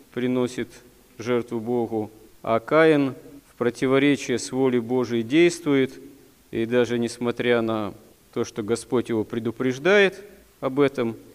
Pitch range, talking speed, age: 115-135 Hz, 115 wpm, 40-59